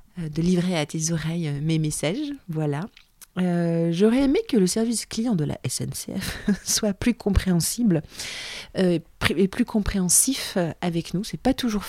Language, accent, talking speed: French, French, 150 wpm